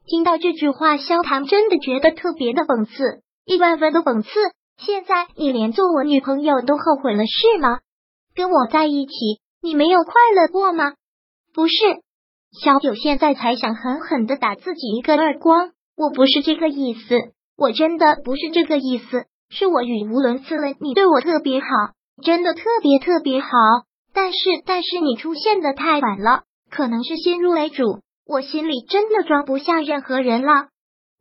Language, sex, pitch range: Chinese, male, 265-335 Hz